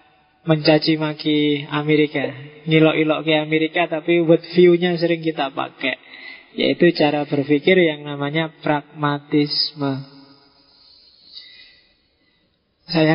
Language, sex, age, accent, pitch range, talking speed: Indonesian, male, 20-39, native, 145-170 Hz, 80 wpm